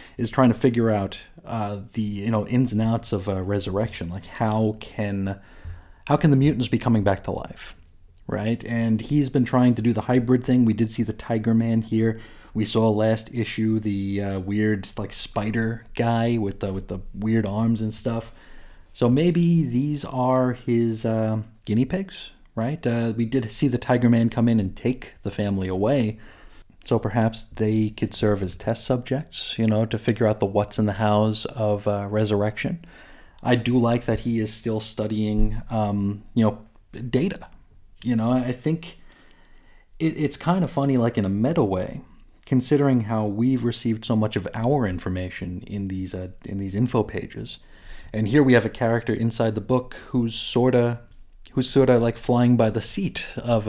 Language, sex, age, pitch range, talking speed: English, male, 30-49, 105-120 Hz, 185 wpm